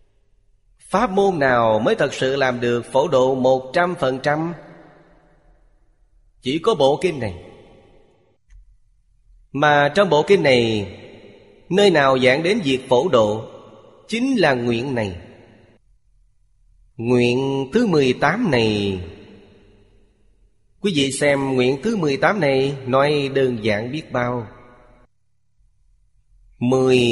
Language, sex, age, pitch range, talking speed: Vietnamese, male, 30-49, 115-145 Hz, 115 wpm